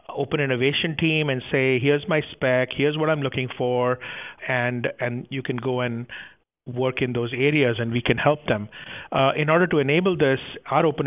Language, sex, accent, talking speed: English, male, Indian, 195 wpm